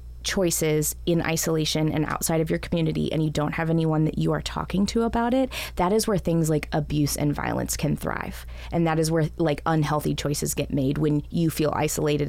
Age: 20-39